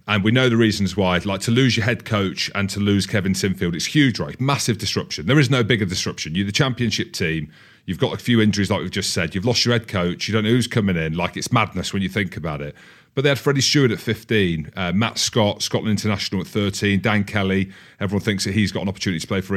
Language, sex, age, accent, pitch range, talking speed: English, male, 40-59, British, 95-115 Hz, 260 wpm